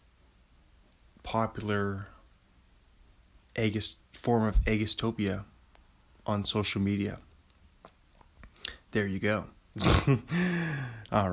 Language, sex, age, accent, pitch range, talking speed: English, male, 20-39, American, 90-115 Hz, 65 wpm